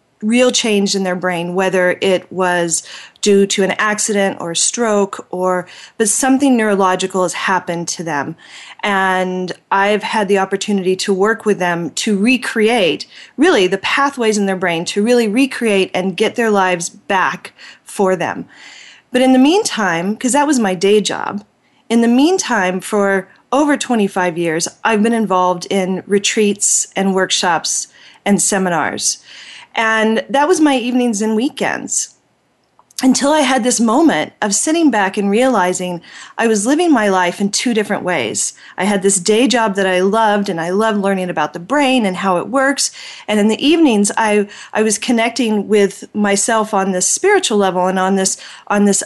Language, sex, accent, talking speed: English, female, American, 170 wpm